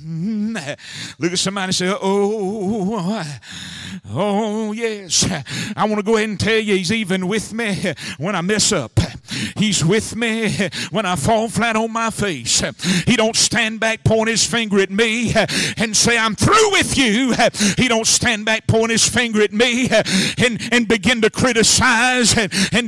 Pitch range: 180-230 Hz